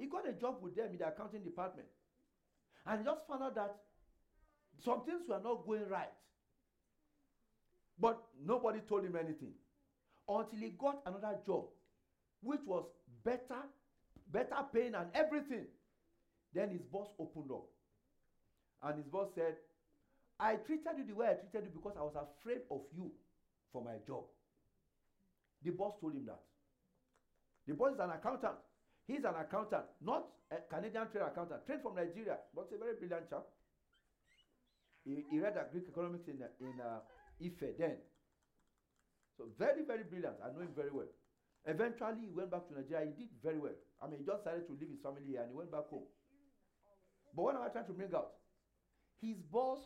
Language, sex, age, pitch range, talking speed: English, male, 50-69, 170-260 Hz, 175 wpm